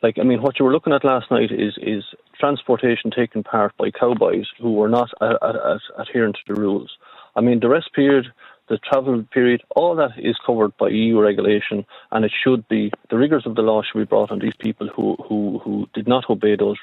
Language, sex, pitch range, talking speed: English, male, 105-125 Hz, 220 wpm